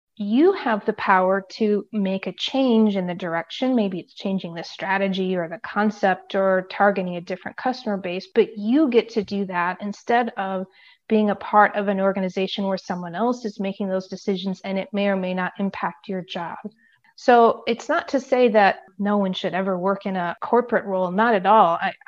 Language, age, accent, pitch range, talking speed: English, 30-49, American, 190-220 Hz, 200 wpm